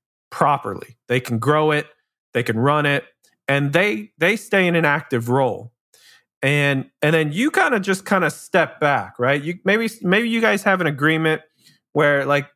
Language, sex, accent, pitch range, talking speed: English, male, American, 135-180 Hz, 185 wpm